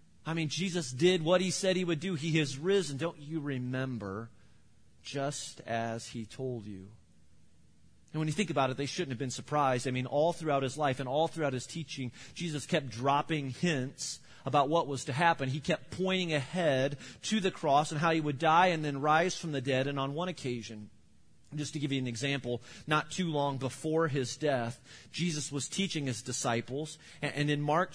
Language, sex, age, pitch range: English, male, 30-49, 130-165 Hz